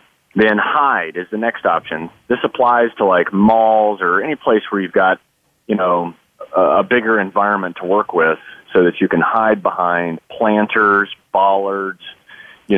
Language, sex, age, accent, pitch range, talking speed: English, male, 30-49, American, 95-115 Hz, 160 wpm